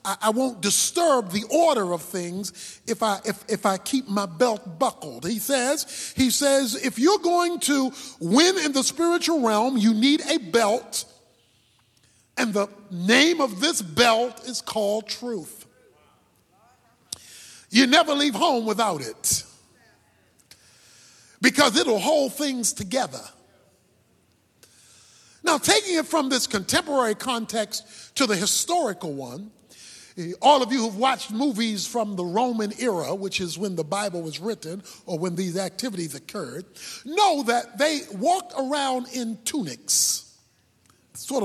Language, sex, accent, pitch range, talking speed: English, male, American, 175-270 Hz, 135 wpm